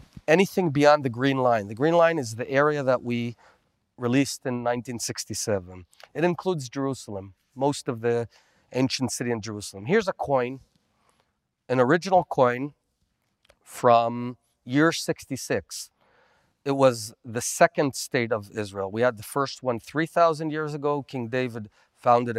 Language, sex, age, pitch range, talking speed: English, male, 40-59, 120-150 Hz, 140 wpm